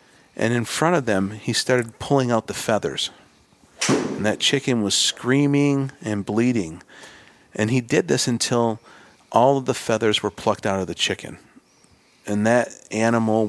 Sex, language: male, English